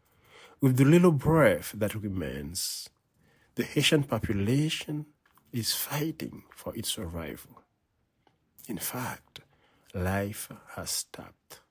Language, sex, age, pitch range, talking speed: English, male, 50-69, 105-140 Hz, 95 wpm